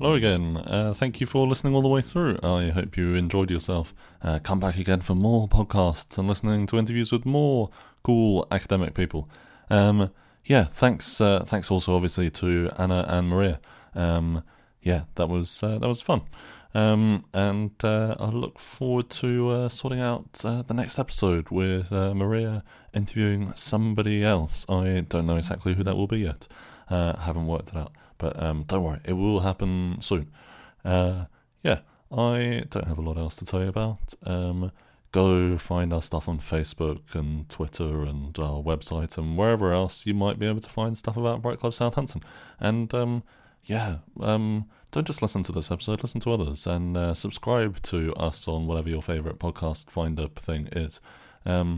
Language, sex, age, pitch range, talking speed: English, male, 20-39, 85-110 Hz, 185 wpm